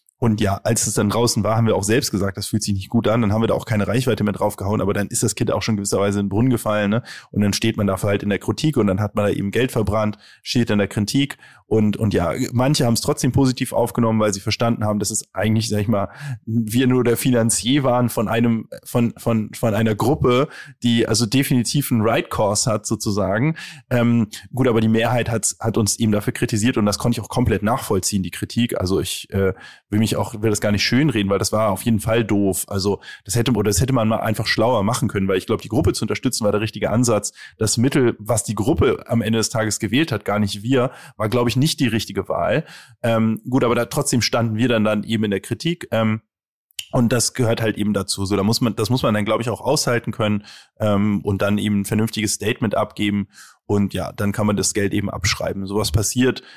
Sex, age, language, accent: male, 20-39, German, German